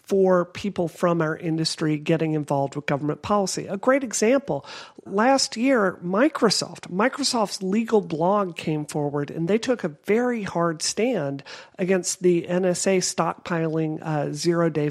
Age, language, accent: 40-59, English, American